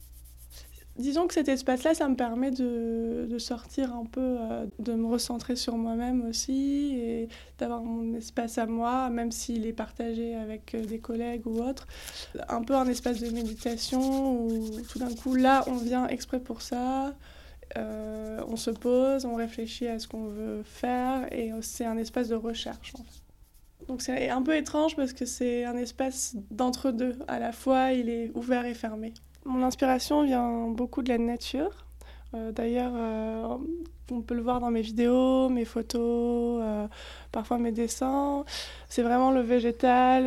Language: French